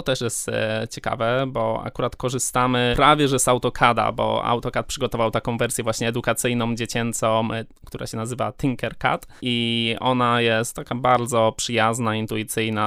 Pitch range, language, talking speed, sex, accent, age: 115-130 Hz, Polish, 135 wpm, male, native, 20-39